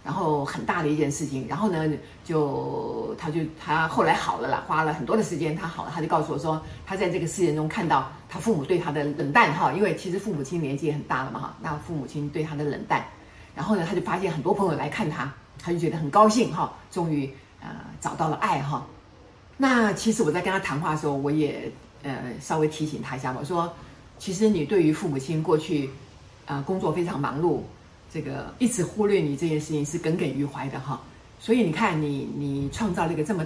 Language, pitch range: Chinese, 145-190 Hz